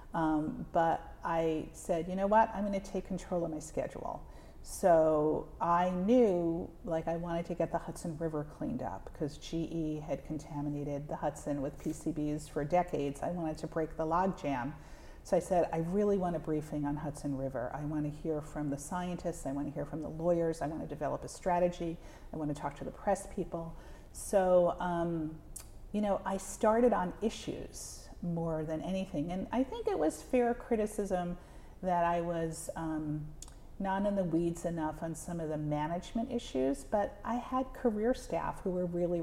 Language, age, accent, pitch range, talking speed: English, 40-59, American, 155-190 Hz, 190 wpm